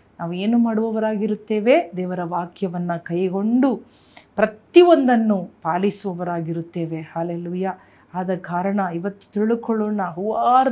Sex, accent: female, native